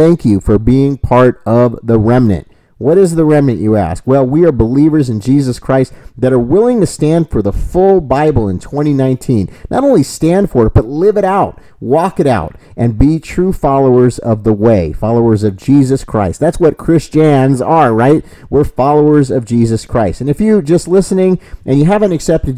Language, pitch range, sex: English, 115-155 Hz, male